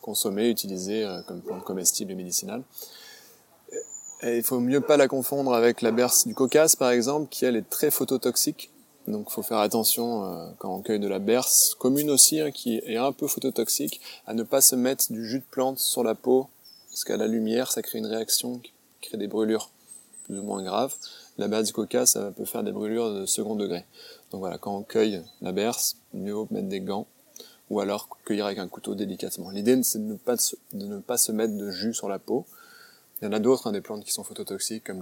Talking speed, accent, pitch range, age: 225 wpm, French, 110-135 Hz, 20-39